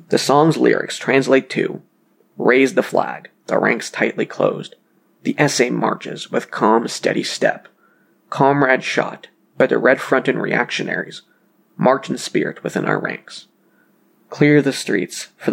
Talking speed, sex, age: 145 wpm, male, 20-39